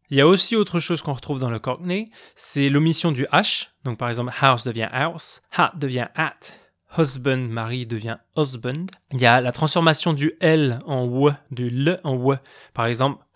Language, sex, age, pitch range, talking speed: French, male, 20-39, 120-155 Hz, 195 wpm